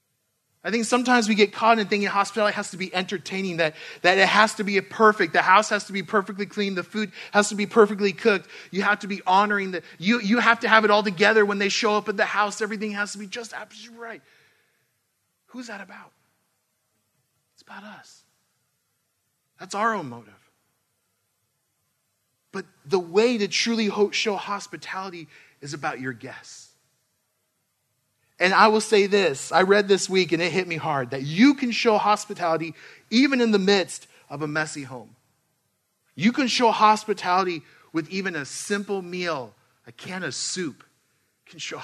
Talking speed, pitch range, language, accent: 180 wpm, 165-215 Hz, English, American